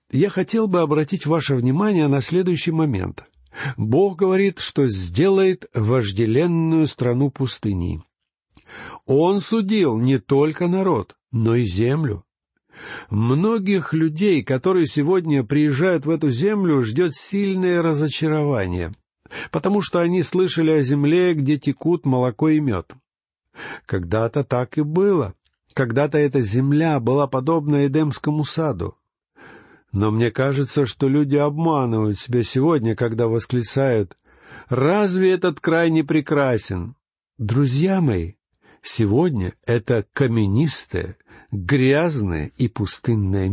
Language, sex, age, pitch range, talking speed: Russian, male, 50-69, 120-170 Hz, 110 wpm